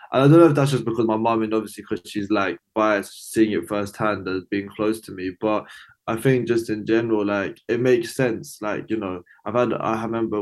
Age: 20-39